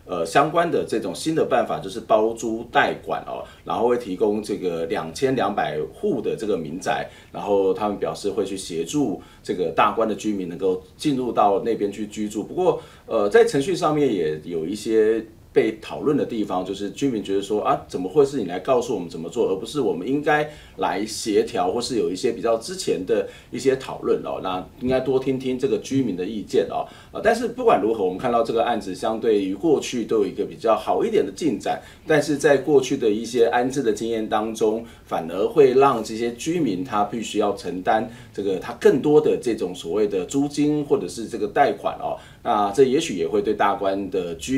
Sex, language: male, Chinese